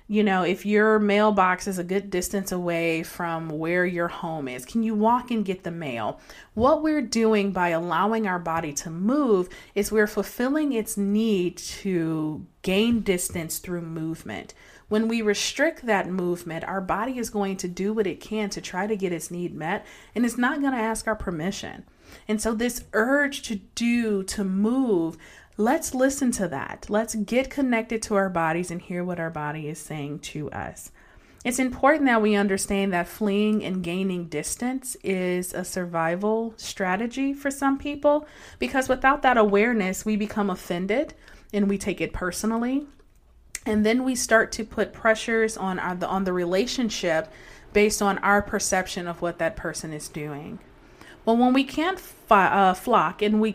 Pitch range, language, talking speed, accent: 180-225 Hz, English, 175 wpm, American